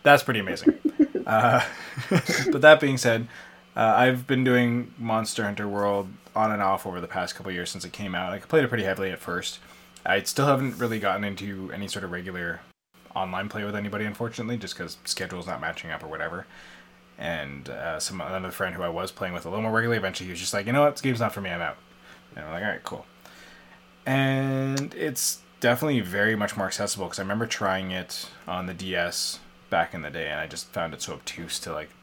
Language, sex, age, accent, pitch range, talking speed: English, male, 20-39, American, 85-120 Hz, 225 wpm